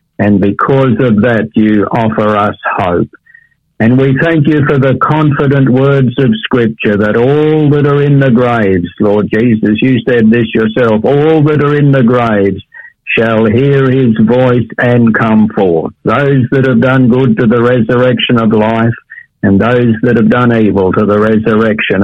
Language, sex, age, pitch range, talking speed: English, male, 60-79, 110-135 Hz, 170 wpm